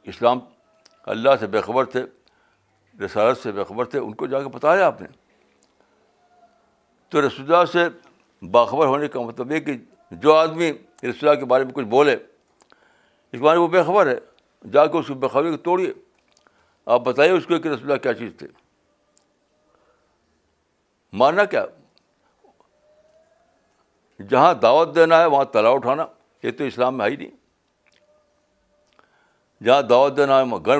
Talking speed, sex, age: 155 wpm, male, 60-79